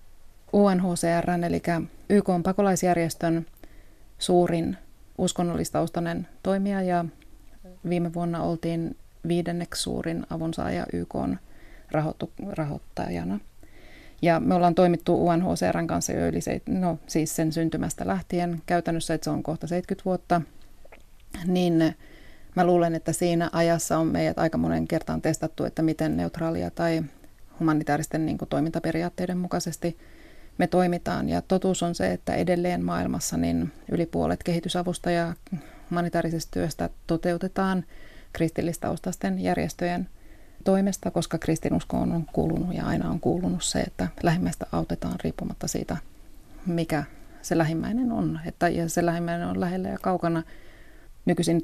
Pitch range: 155-180 Hz